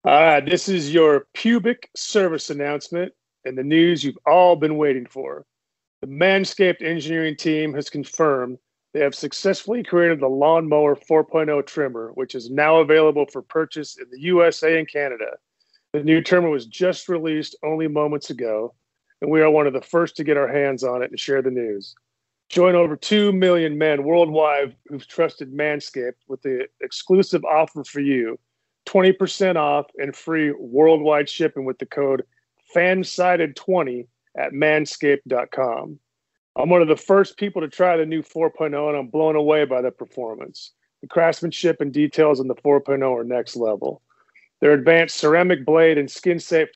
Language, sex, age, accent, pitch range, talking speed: English, male, 40-59, American, 140-170 Hz, 165 wpm